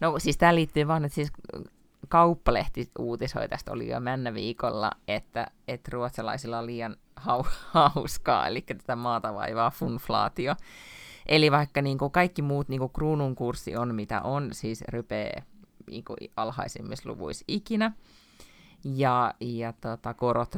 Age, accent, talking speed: 30-49, native, 130 wpm